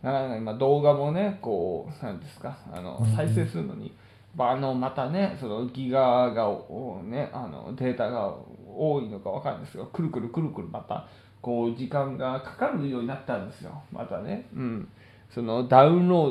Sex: male